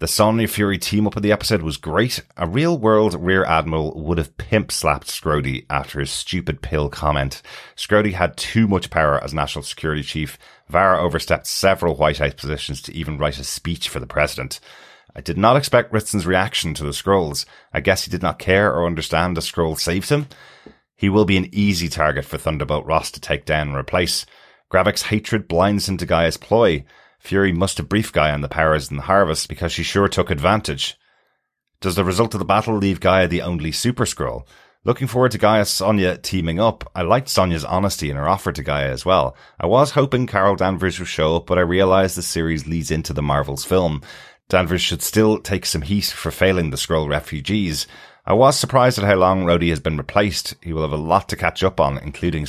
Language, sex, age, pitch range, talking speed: English, male, 30-49, 75-100 Hz, 215 wpm